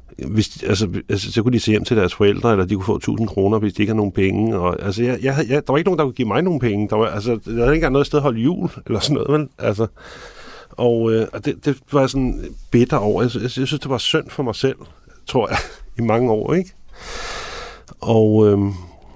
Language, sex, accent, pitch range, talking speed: Danish, male, native, 110-135 Hz, 255 wpm